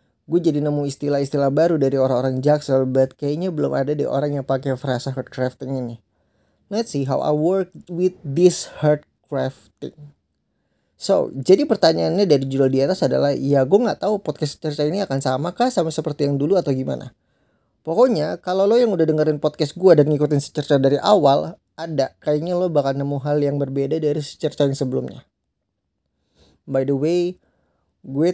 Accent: native